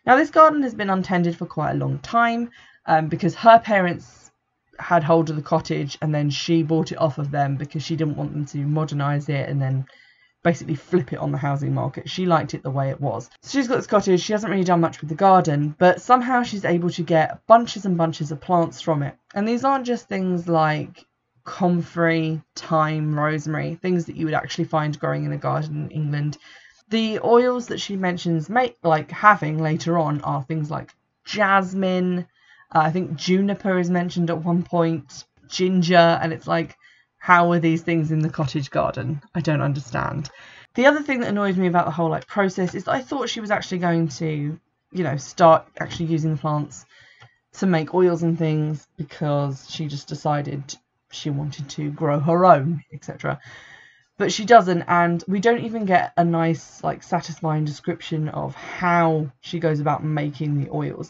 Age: 20-39